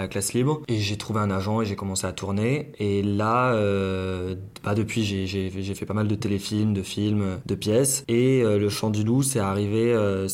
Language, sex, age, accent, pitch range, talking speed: French, male, 20-39, French, 100-120 Hz, 225 wpm